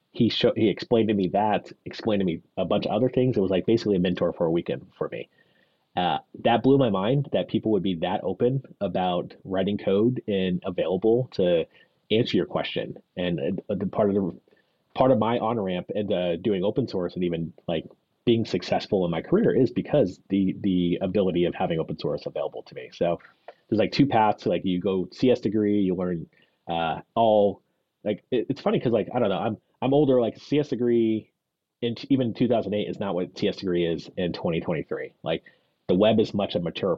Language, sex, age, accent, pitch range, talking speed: English, male, 30-49, American, 95-120 Hz, 210 wpm